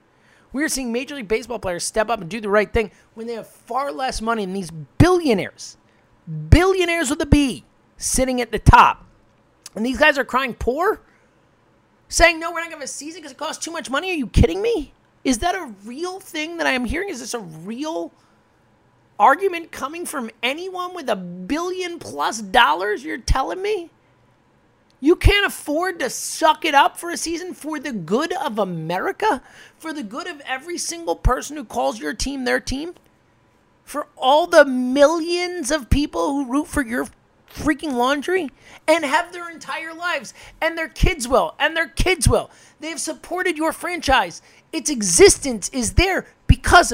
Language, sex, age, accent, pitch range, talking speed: English, male, 30-49, American, 230-335 Hz, 180 wpm